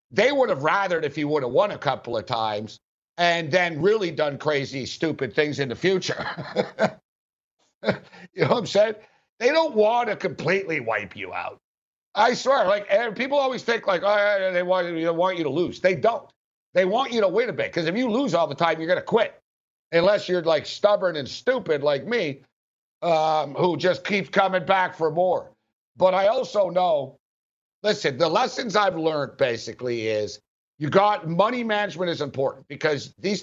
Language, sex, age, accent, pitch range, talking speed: English, male, 60-79, American, 160-205 Hz, 190 wpm